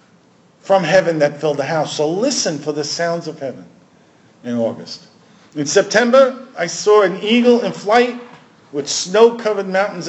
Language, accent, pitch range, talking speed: English, American, 150-210 Hz, 155 wpm